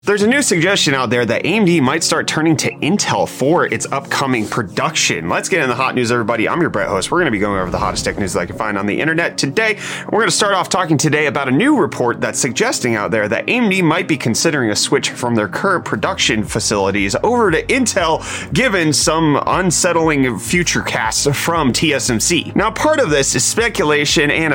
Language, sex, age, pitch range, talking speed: English, male, 30-49, 110-155 Hz, 215 wpm